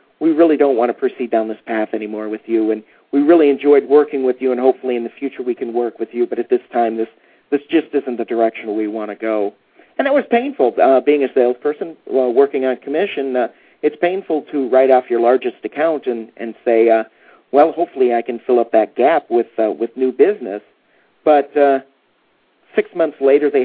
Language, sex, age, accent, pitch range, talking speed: English, male, 50-69, American, 115-150 Hz, 225 wpm